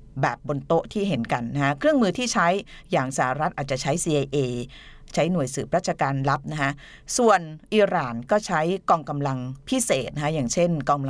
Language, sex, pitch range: Thai, female, 140-185 Hz